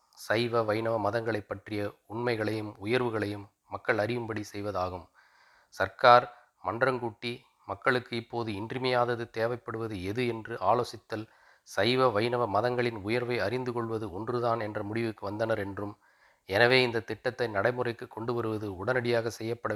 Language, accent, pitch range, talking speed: Tamil, native, 105-115 Hz, 110 wpm